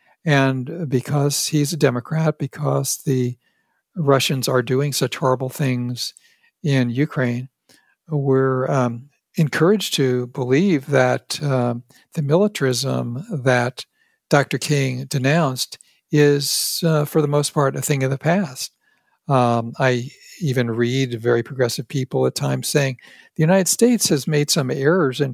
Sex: male